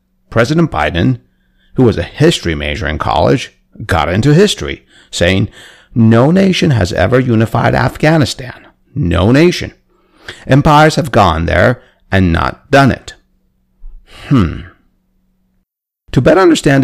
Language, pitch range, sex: English, 85-120 Hz, male